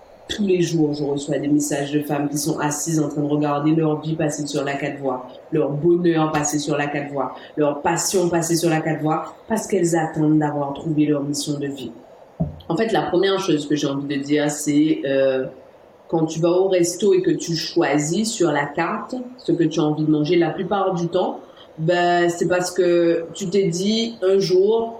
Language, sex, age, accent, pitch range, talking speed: French, female, 40-59, French, 155-195 Hz, 215 wpm